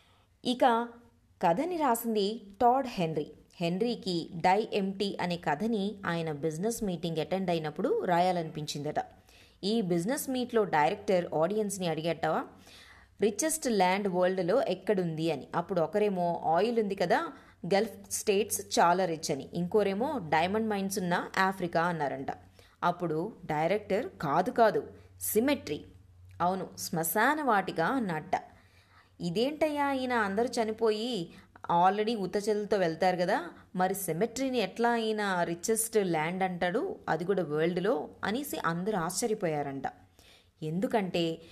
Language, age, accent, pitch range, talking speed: Telugu, 20-39, native, 160-220 Hz, 105 wpm